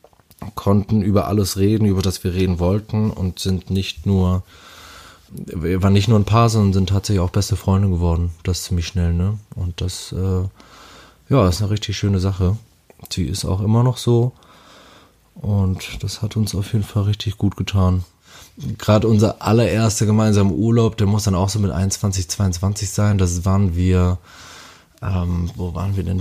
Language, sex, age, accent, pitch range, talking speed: German, male, 20-39, German, 95-105 Hz, 180 wpm